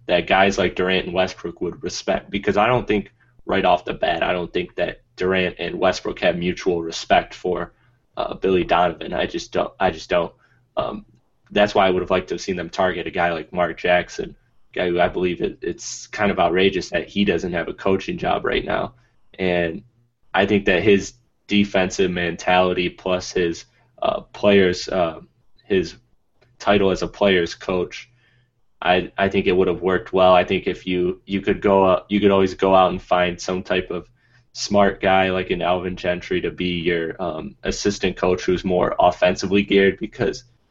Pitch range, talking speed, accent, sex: 90-100 Hz, 195 wpm, American, male